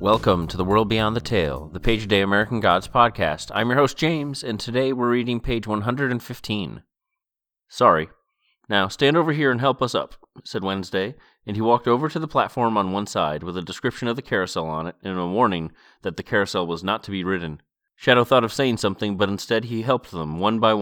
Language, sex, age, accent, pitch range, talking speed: English, male, 30-49, American, 95-125 Hz, 215 wpm